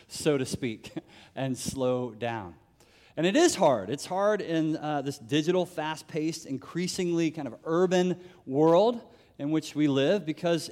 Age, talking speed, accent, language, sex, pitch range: 30-49, 150 wpm, American, English, male, 140-185 Hz